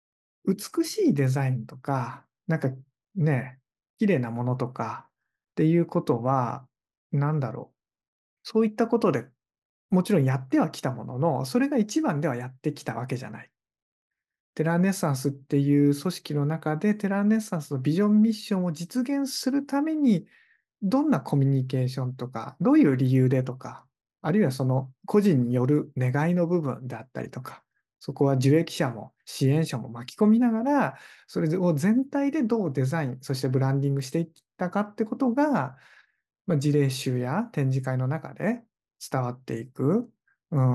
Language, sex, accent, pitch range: Japanese, male, native, 130-195 Hz